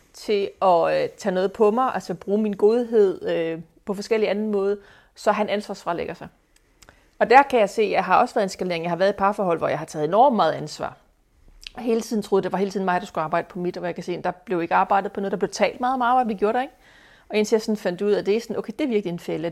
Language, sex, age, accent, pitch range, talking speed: Danish, female, 30-49, native, 185-215 Hz, 300 wpm